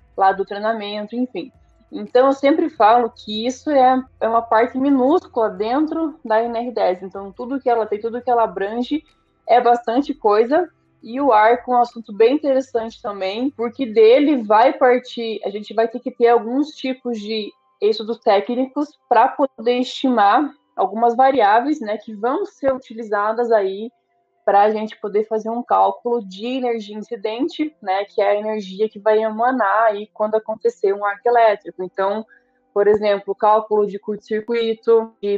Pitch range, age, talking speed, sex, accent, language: 210-255 Hz, 20-39, 160 wpm, female, Brazilian, Portuguese